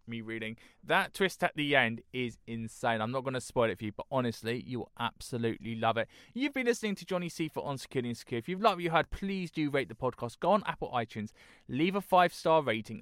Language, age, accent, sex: English, 20-39, British, male